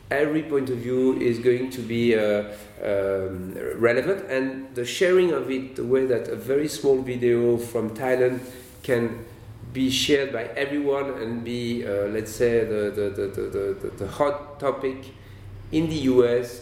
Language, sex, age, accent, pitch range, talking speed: English, male, 40-59, French, 110-135 Hz, 165 wpm